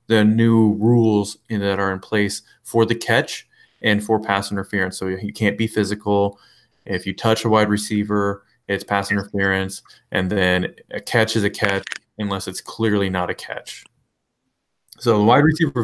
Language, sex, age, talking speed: English, male, 20-39, 170 wpm